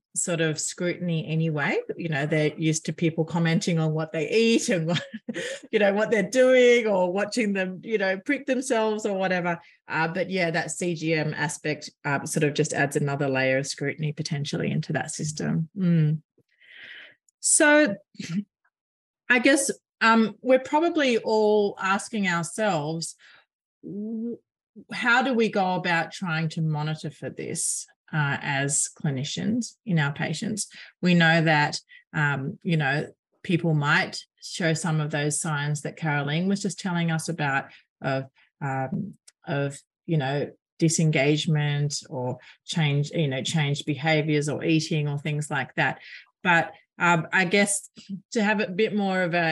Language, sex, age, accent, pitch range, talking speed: English, female, 30-49, Australian, 150-200 Hz, 150 wpm